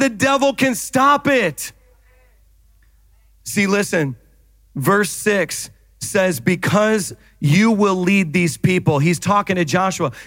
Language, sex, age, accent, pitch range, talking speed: English, male, 40-59, American, 155-200 Hz, 115 wpm